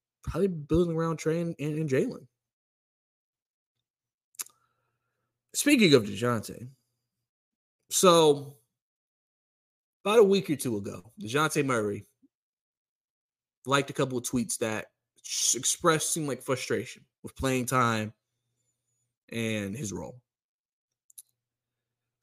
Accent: American